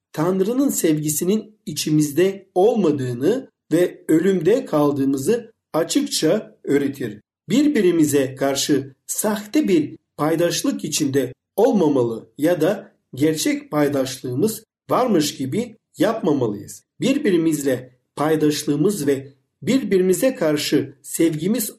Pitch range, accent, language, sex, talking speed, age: 145-215 Hz, native, Turkish, male, 80 wpm, 50-69